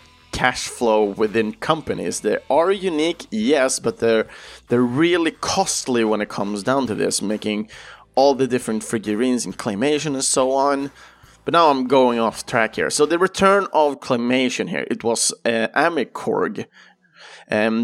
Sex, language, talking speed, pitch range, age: male, Swedish, 160 wpm, 115-150 Hz, 30-49